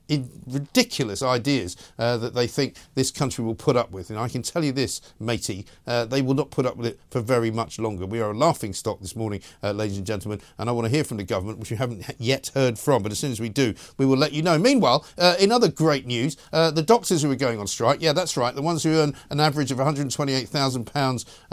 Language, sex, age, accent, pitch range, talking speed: English, male, 50-69, British, 120-160 Hz, 255 wpm